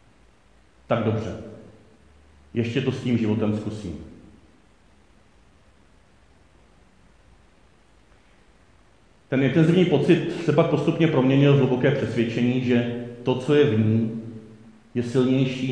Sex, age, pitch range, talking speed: male, 40-59, 110-130 Hz, 100 wpm